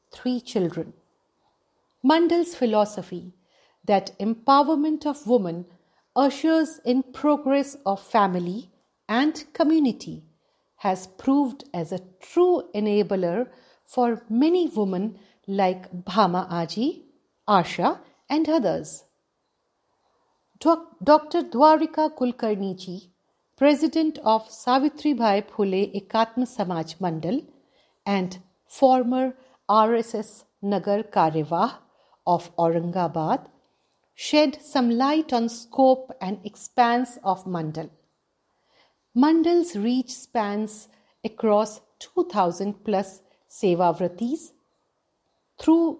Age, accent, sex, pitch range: 50-69, native, female, 190-275 Hz